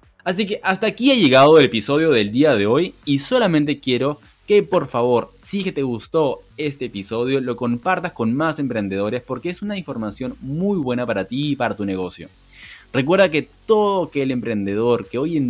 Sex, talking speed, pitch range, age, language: male, 200 wpm, 110-170 Hz, 20-39, Spanish